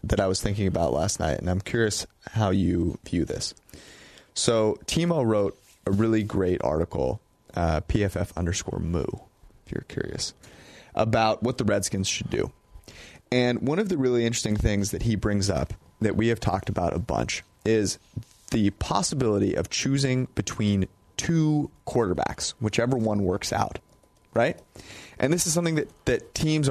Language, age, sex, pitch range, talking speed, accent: English, 30-49, male, 100-125 Hz, 160 wpm, American